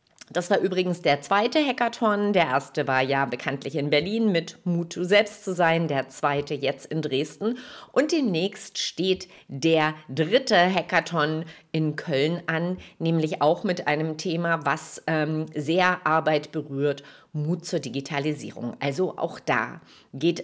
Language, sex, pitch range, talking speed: German, female, 150-190 Hz, 145 wpm